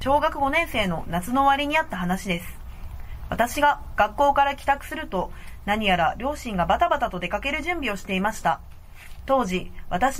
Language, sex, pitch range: Japanese, female, 190-290 Hz